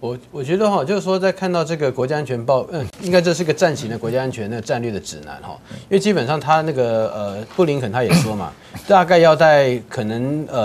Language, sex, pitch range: Chinese, male, 120-165 Hz